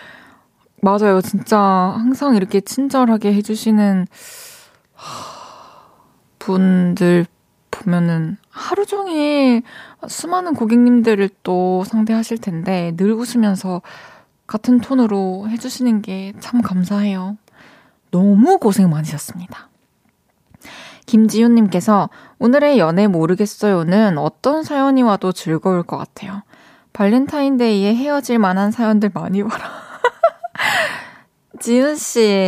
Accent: native